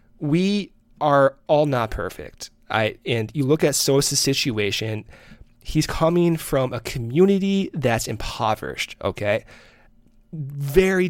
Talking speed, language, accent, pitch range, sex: 115 wpm, English, American, 120-155 Hz, male